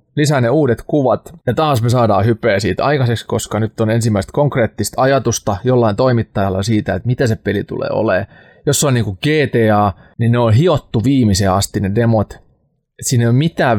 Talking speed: 185 wpm